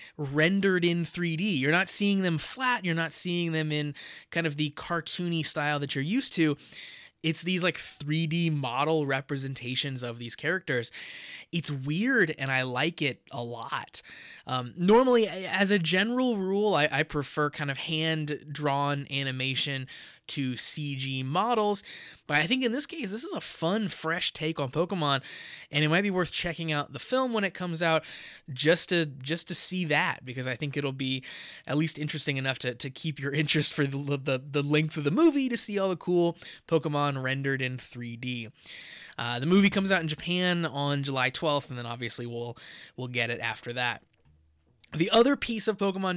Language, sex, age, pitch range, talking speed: English, male, 20-39, 135-180 Hz, 185 wpm